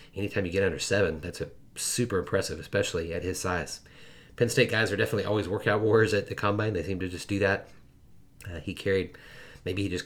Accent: American